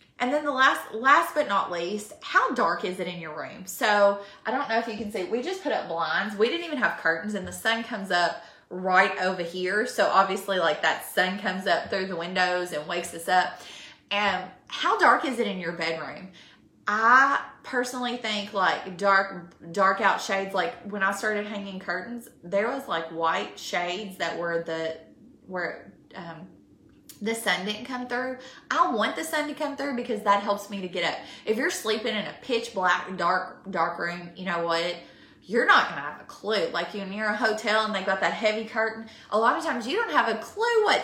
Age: 20-39